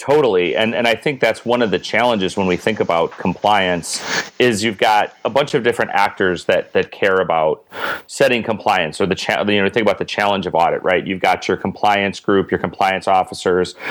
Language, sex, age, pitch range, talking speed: English, male, 30-49, 95-110 Hz, 210 wpm